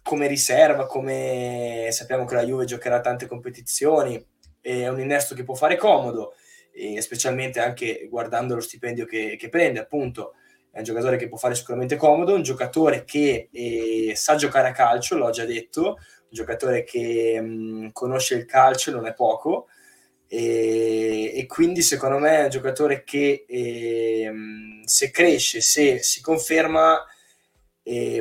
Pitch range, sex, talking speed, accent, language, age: 115-140 Hz, male, 155 wpm, native, Italian, 20-39